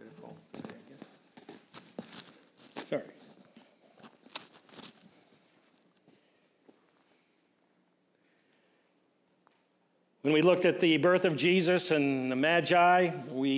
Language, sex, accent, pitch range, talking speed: English, male, American, 135-170 Hz, 55 wpm